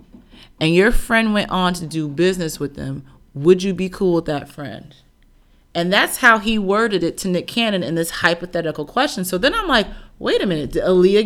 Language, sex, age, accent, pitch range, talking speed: English, female, 30-49, American, 160-220 Hz, 210 wpm